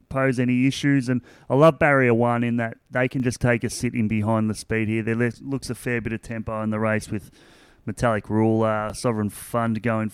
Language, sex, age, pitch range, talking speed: English, male, 30-49, 105-120 Hz, 215 wpm